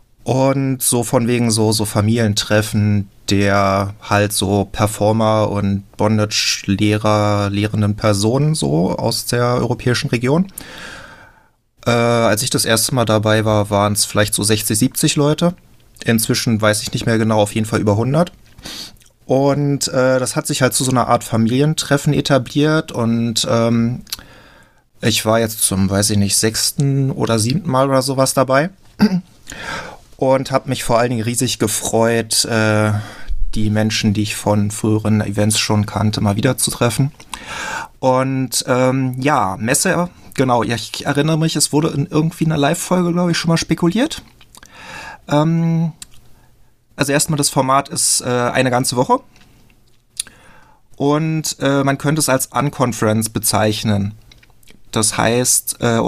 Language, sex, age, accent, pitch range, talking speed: German, male, 30-49, German, 110-140 Hz, 145 wpm